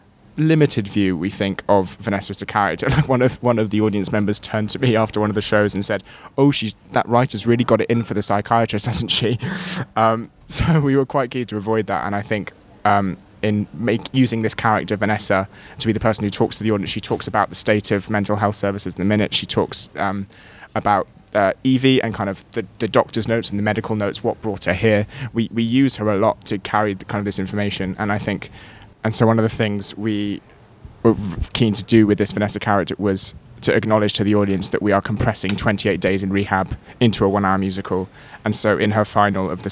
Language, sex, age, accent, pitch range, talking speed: English, male, 20-39, British, 100-115 Hz, 235 wpm